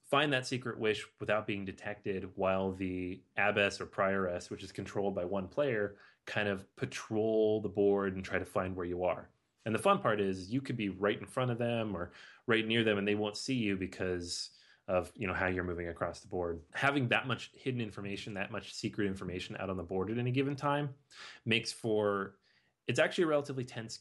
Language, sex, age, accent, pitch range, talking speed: English, male, 30-49, American, 95-115 Hz, 210 wpm